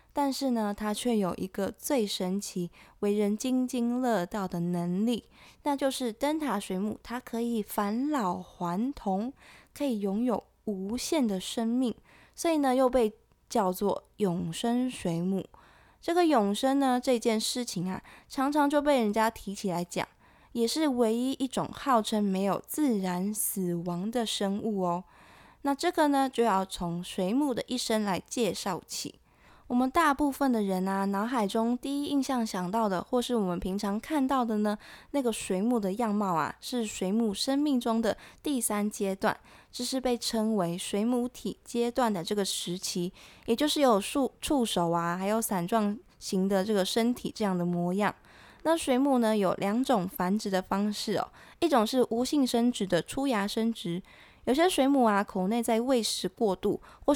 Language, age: Chinese, 20-39